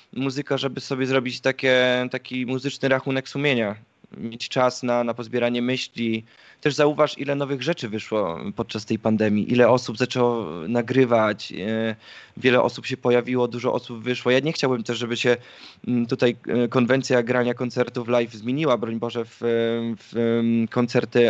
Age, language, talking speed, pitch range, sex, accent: 20-39, Polish, 145 wpm, 115-135 Hz, male, native